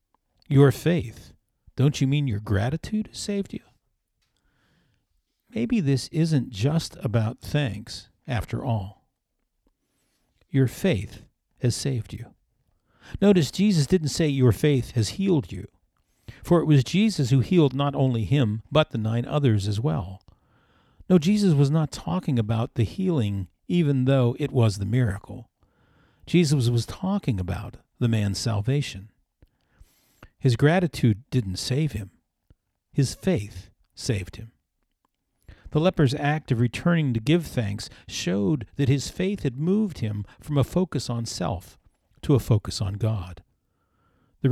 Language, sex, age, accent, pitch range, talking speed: English, male, 50-69, American, 105-150 Hz, 135 wpm